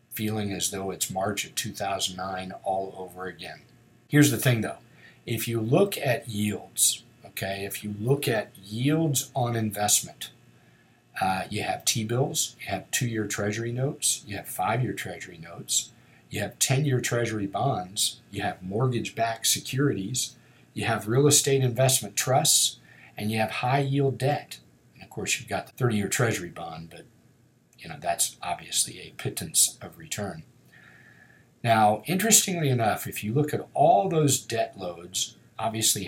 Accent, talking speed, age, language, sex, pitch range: American, 150 wpm, 50-69, English, male, 100-135 Hz